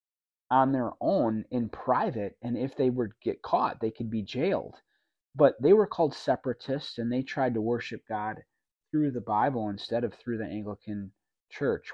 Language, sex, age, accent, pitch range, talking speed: English, male, 30-49, American, 110-135 Hz, 175 wpm